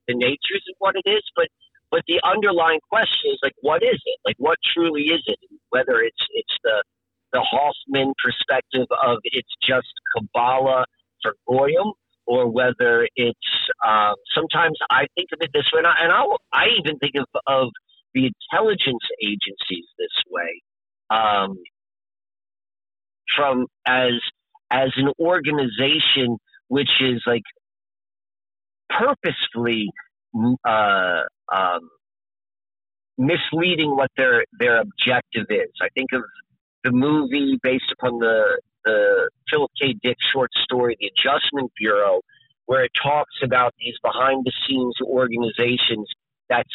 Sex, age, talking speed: male, 50-69, 130 wpm